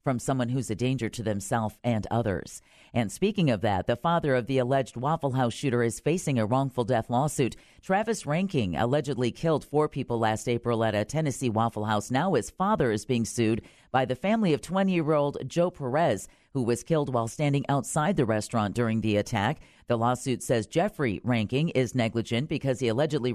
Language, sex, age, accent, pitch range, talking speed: English, female, 40-59, American, 115-165 Hz, 190 wpm